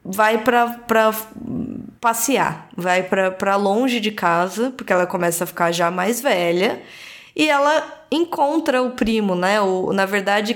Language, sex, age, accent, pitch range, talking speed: Portuguese, female, 10-29, Brazilian, 200-270 Hz, 150 wpm